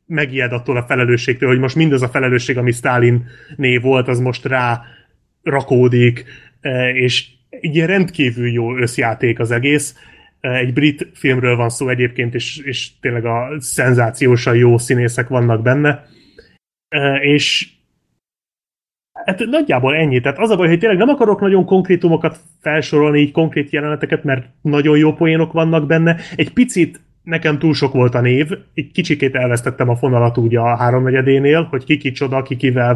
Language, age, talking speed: Hungarian, 30-49, 155 wpm